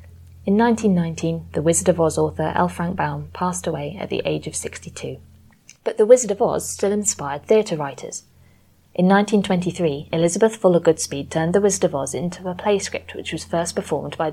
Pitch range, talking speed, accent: 150-185 Hz, 190 wpm, British